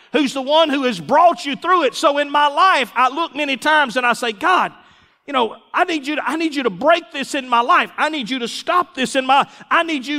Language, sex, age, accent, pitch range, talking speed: English, male, 40-59, American, 210-305 Hz, 275 wpm